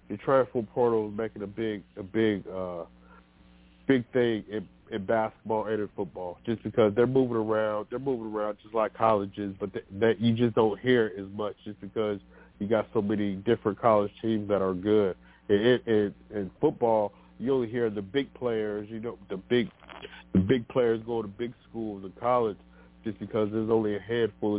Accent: American